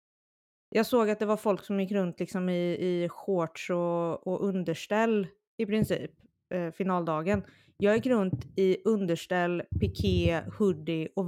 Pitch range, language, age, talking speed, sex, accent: 170-220 Hz, Swedish, 20-39, 150 wpm, female, native